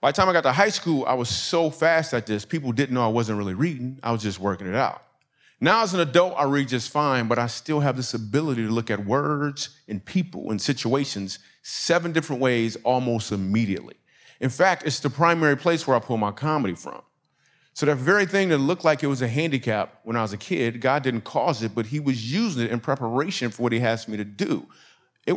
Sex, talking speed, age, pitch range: male, 240 wpm, 30-49, 115-150 Hz